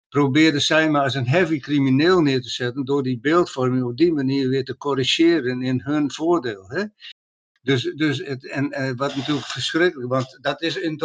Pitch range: 135-170 Hz